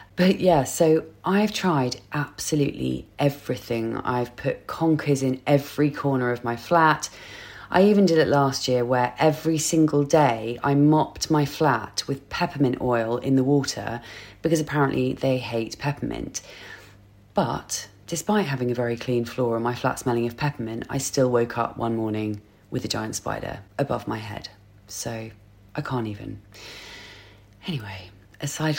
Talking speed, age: 150 wpm, 30-49